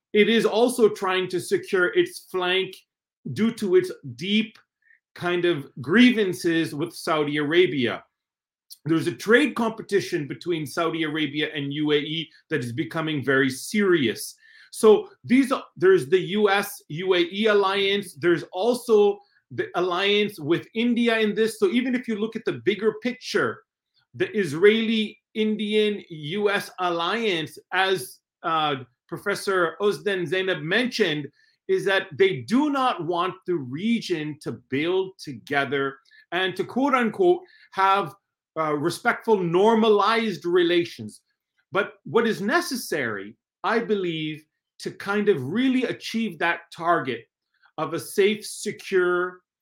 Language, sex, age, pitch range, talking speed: Turkish, male, 30-49, 165-225 Hz, 120 wpm